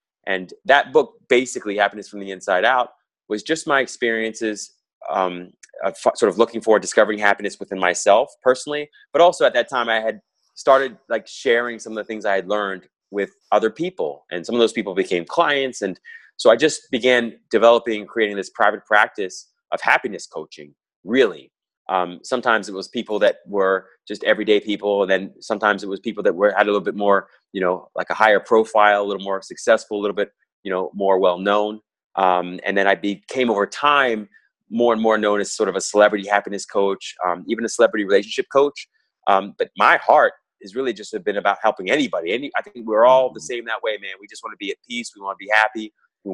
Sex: male